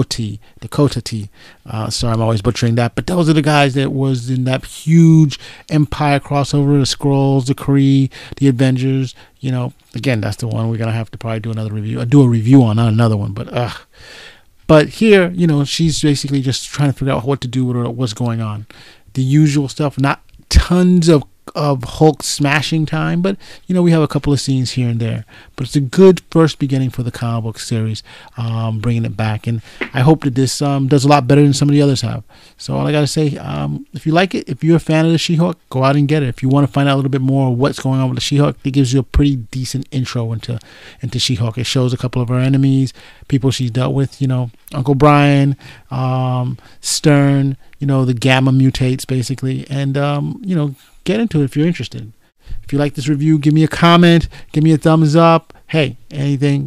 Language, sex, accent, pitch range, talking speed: English, male, American, 120-145 Hz, 235 wpm